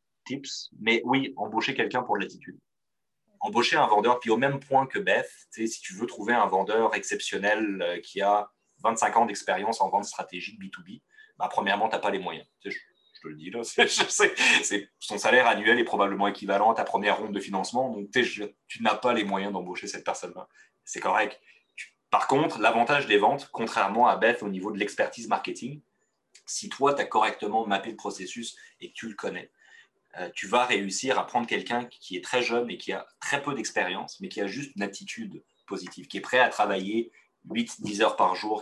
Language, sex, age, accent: French, male, 30-49, French